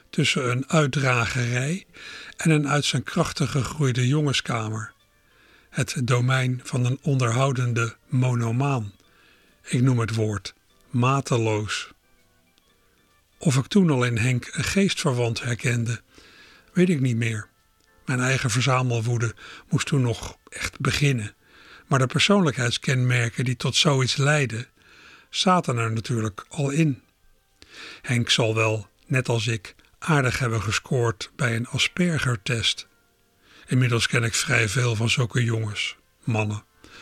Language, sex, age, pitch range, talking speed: Dutch, male, 60-79, 110-135 Hz, 120 wpm